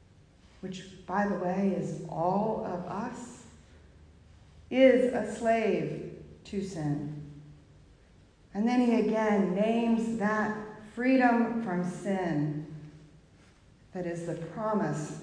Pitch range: 180-230 Hz